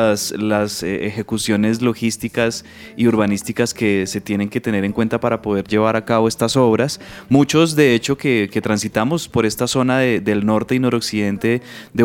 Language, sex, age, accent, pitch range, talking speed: Spanish, male, 20-39, Colombian, 110-125 Hz, 170 wpm